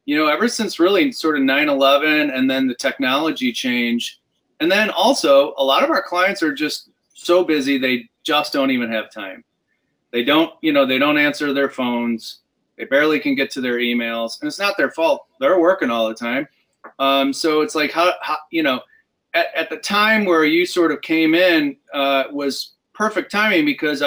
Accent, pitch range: American, 135-185 Hz